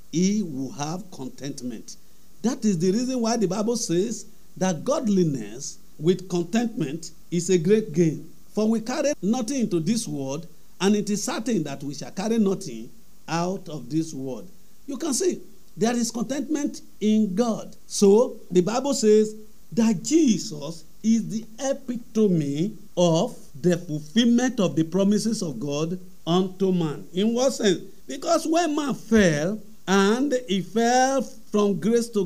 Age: 50-69